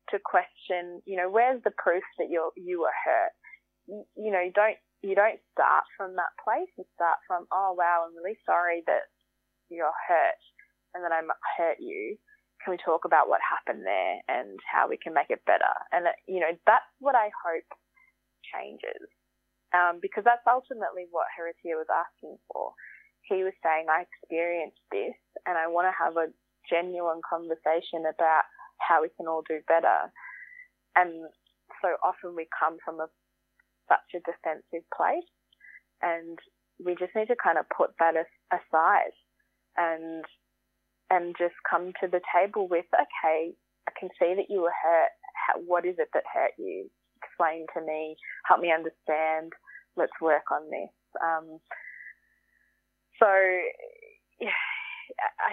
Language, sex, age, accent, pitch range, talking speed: English, female, 20-39, Australian, 165-245 Hz, 160 wpm